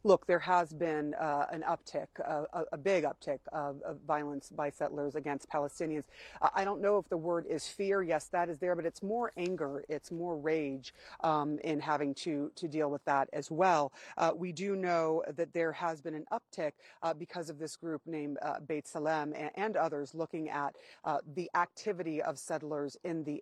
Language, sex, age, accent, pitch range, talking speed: English, female, 40-59, American, 150-180 Hz, 200 wpm